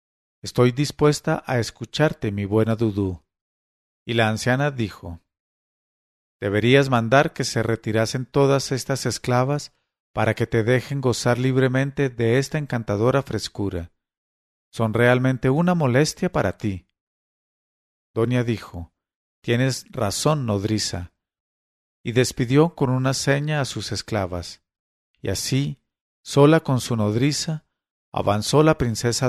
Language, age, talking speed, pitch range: English, 50-69, 115 wpm, 105-140 Hz